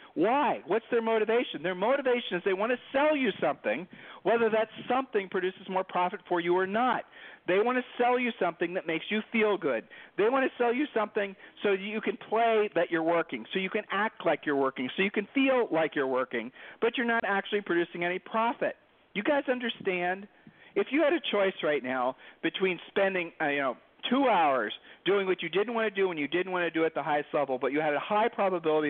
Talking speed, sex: 220 wpm, male